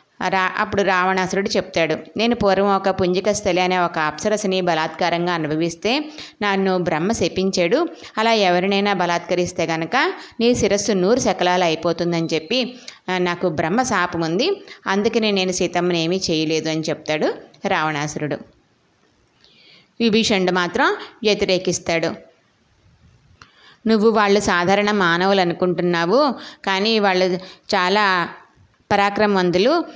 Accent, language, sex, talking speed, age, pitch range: native, Telugu, female, 100 wpm, 20-39, 170-210 Hz